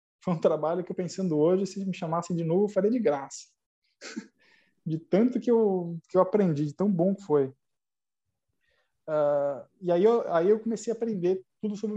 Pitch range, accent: 160-205 Hz, Brazilian